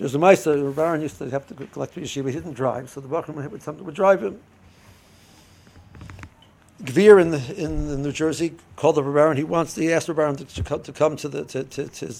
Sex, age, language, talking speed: male, 60-79, English, 230 wpm